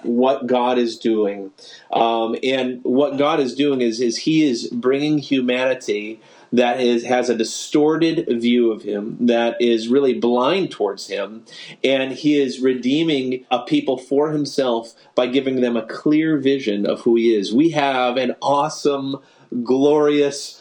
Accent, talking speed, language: American, 155 wpm, English